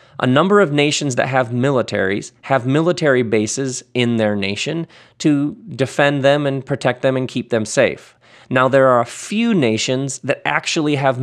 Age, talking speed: 40-59, 170 wpm